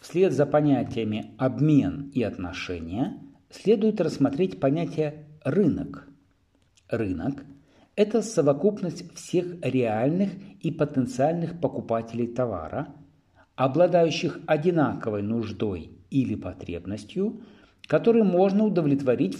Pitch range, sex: 105-160 Hz, male